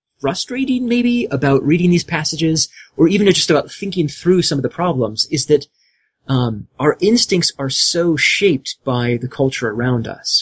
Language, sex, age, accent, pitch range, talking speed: English, male, 30-49, American, 135-195 Hz, 165 wpm